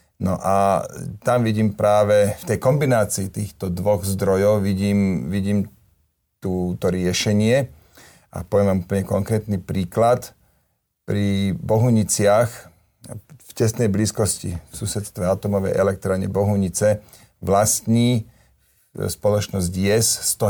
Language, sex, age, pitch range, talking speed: Slovak, male, 40-59, 95-115 Hz, 100 wpm